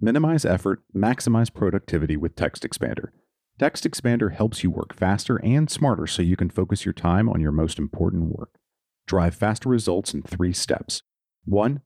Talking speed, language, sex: 165 wpm, English, male